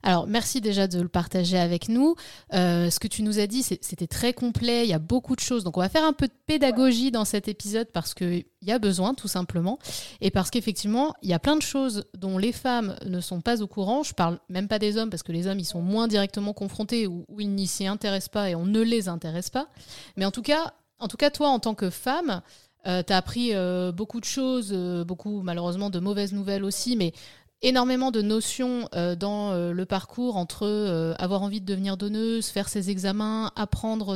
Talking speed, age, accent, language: 235 wpm, 30-49, French, French